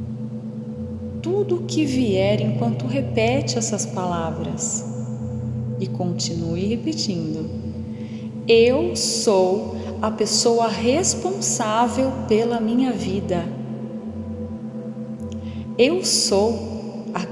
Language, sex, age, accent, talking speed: Portuguese, female, 30-49, Brazilian, 75 wpm